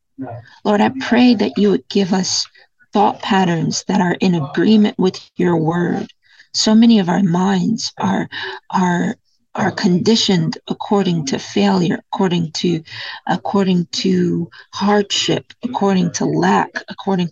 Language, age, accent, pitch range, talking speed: English, 40-59, American, 175-210 Hz, 130 wpm